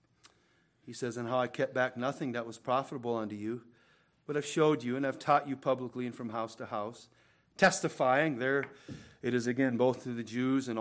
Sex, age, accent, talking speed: male, 40-59, American, 205 wpm